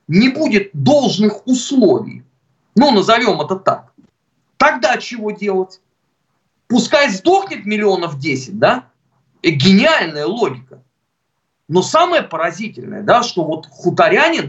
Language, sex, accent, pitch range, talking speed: Russian, male, native, 175-245 Hz, 105 wpm